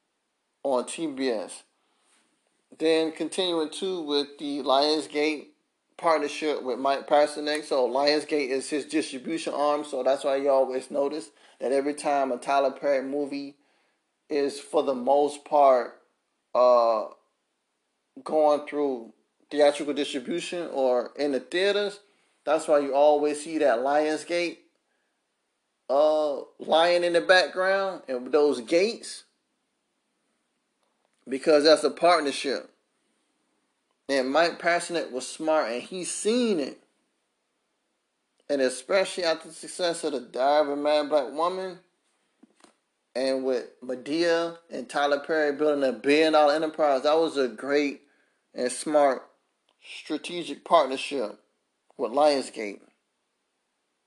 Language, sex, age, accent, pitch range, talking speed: English, male, 30-49, American, 140-160 Hz, 115 wpm